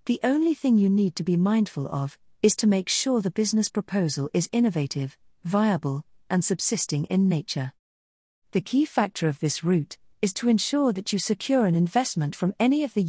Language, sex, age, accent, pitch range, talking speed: English, female, 40-59, British, 155-215 Hz, 190 wpm